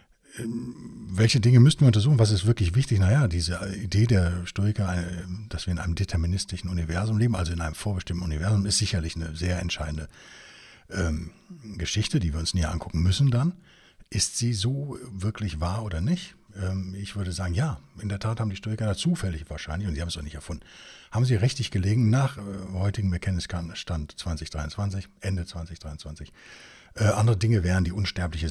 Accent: German